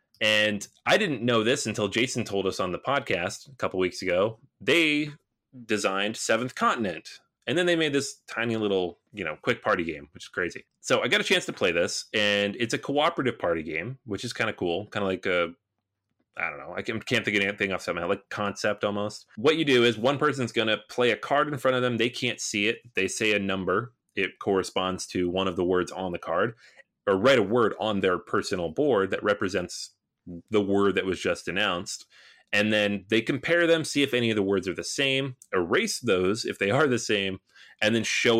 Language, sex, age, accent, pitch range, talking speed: English, male, 30-49, American, 100-125 Hz, 225 wpm